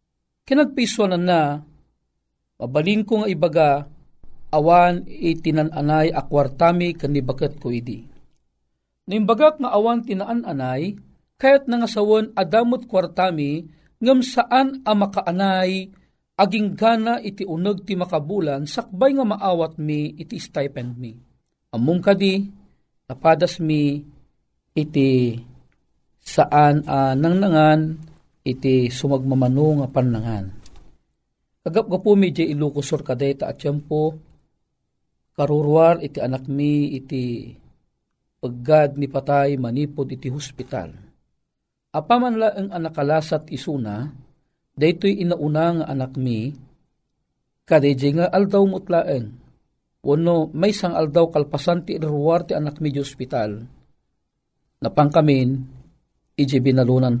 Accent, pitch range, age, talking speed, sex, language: native, 130-185 Hz, 40-59, 100 wpm, male, Filipino